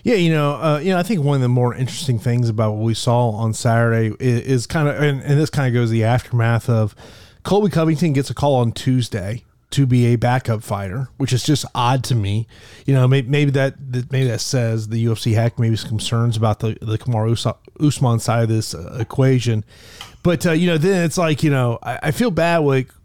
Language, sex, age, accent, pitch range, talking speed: English, male, 30-49, American, 115-150 Hz, 235 wpm